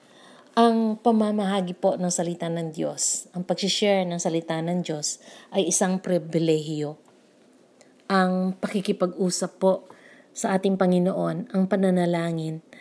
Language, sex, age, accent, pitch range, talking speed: Filipino, female, 40-59, native, 180-220 Hz, 110 wpm